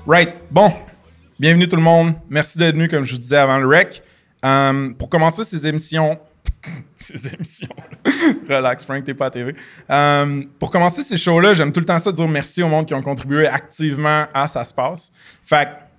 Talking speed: 195 wpm